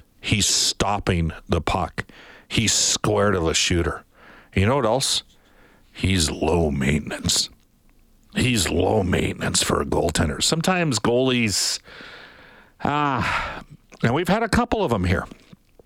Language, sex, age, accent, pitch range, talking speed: English, male, 60-79, American, 95-130 Hz, 130 wpm